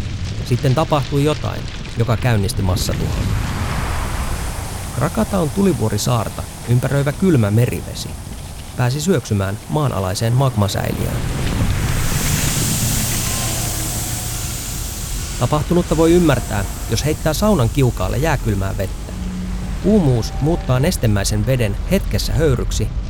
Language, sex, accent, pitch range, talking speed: Finnish, male, native, 90-120 Hz, 80 wpm